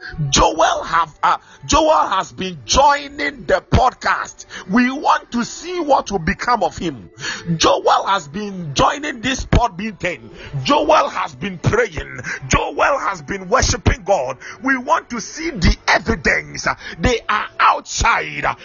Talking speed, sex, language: 135 wpm, male, English